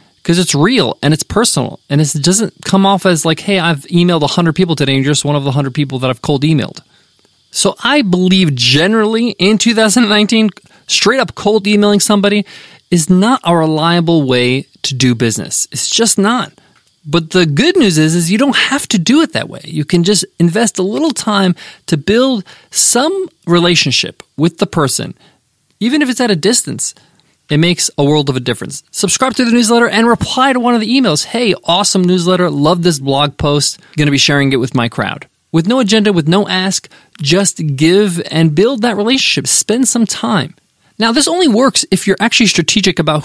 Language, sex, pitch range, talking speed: English, male, 155-215 Hz, 200 wpm